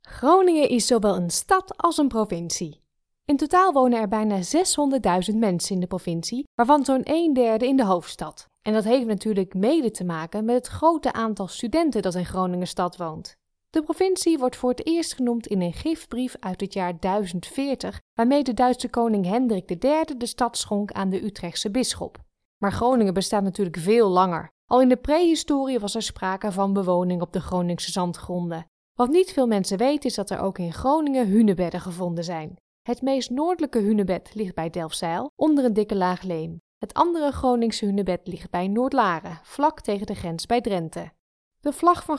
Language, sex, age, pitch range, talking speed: Dutch, female, 20-39, 185-270 Hz, 185 wpm